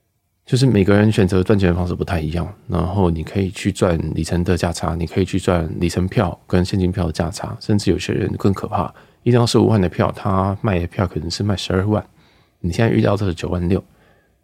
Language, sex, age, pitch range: Chinese, male, 20-39, 90-110 Hz